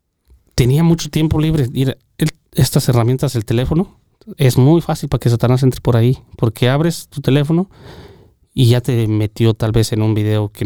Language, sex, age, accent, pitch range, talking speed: Spanish, male, 30-49, Mexican, 115-140 Hz, 175 wpm